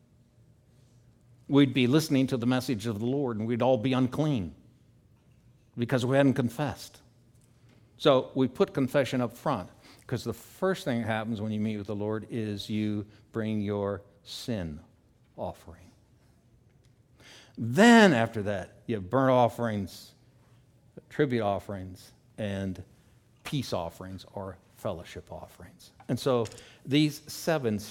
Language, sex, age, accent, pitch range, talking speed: English, male, 60-79, American, 105-125 Hz, 130 wpm